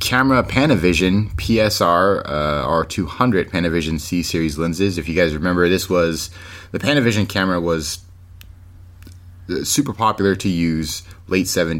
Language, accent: English, American